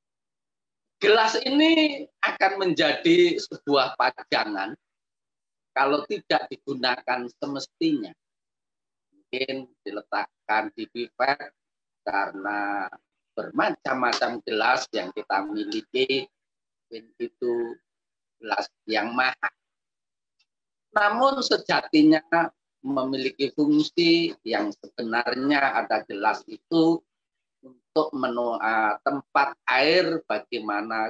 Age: 30-49